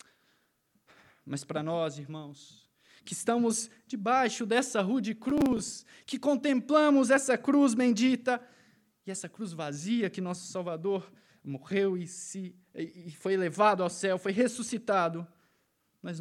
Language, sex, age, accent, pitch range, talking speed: Portuguese, male, 20-39, Brazilian, 185-250 Hz, 120 wpm